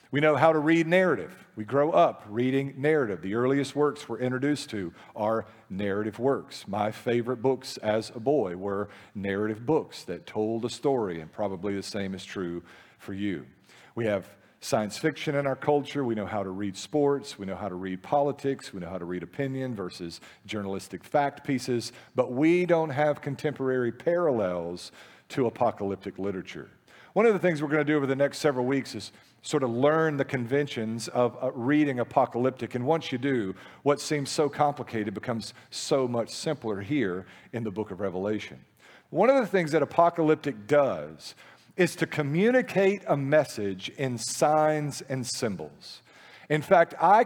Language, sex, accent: English, male, American